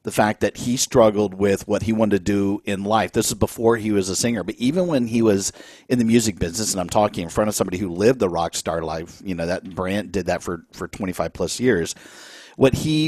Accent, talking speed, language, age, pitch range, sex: American, 250 wpm, English, 50-69, 100-125 Hz, male